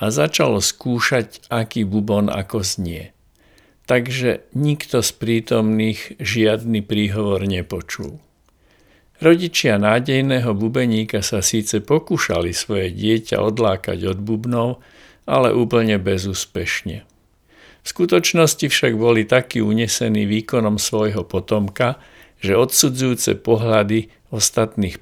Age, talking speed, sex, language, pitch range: 50-69, 100 wpm, male, Slovak, 100-120 Hz